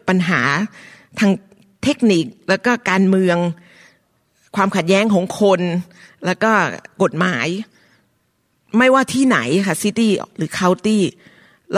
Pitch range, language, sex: 175-220 Hz, Thai, female